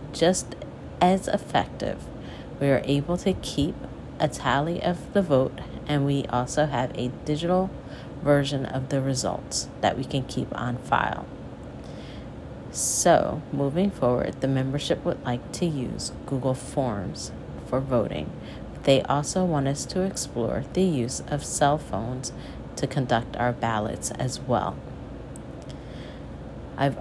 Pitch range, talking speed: 125-155 Hz, 135 wpm